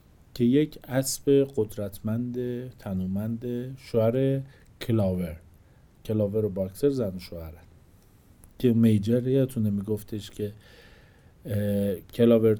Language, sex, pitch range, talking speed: Persian, male, 110-155 Hz, 90 wpm